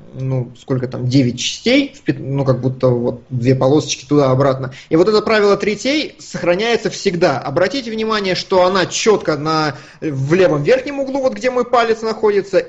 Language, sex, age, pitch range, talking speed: Russian, male, 20-39, 140-185 Hz, 155 wpm